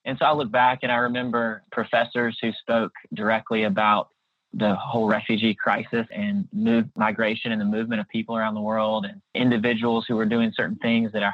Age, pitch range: 20-39, 110-125 Hz